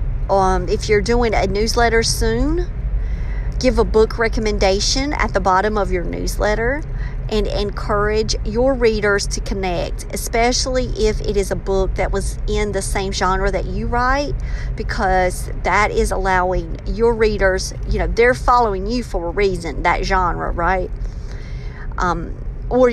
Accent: American